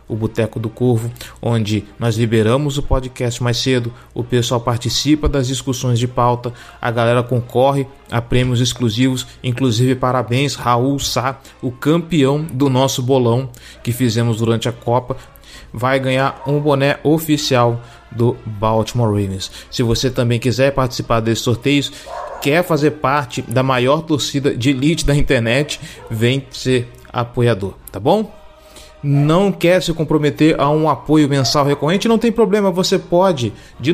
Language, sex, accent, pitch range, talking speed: Portuguese, male, Brazilian, 120-150 Hz, 145 wpm